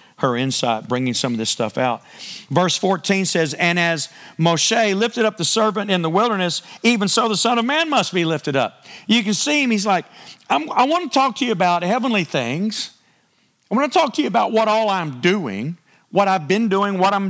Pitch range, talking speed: 165-225 Hz, 220 wpm